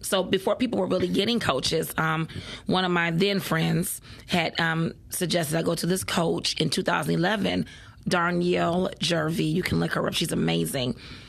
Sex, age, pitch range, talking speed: female, 30-49, 160-190 Hz, 170 wpm